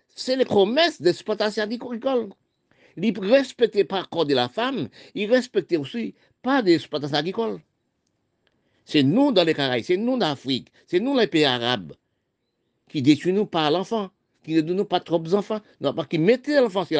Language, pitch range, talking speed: French, 145-245 Hz, 175 wpm